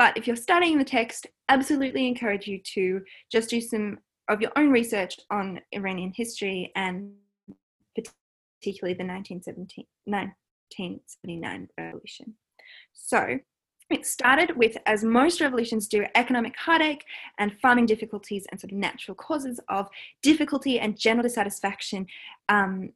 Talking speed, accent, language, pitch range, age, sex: 130 wpm, Australian, English, 200-245 Hz, 20-39, female